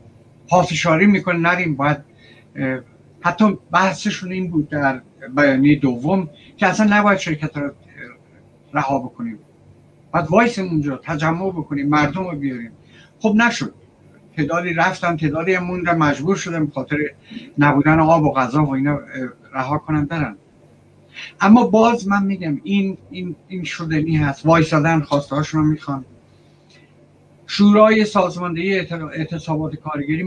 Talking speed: 120 wpm